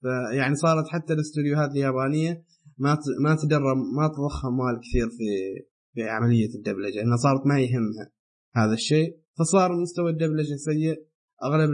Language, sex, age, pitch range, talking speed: Arabic, male, 20-39, 130-160 Hz, 135 wpm